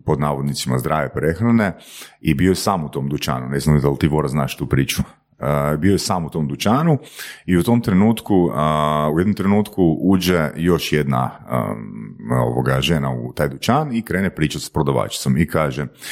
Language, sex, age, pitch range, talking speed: Croatian, male, 40-59, 75-95 Hz, 175 wpm